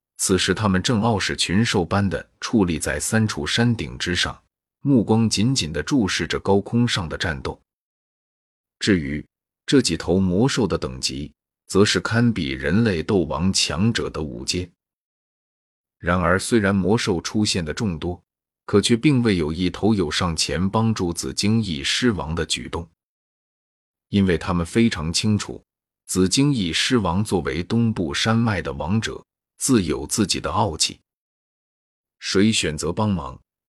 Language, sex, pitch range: Chinese, male, 85-110 Hz